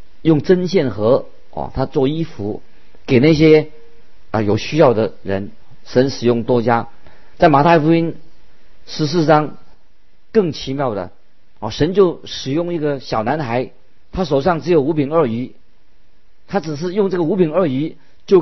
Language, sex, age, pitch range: Chinese, male, 50-69, 110-155 Hz